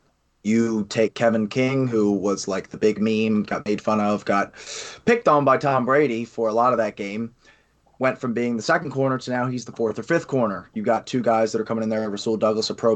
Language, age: English, 20-39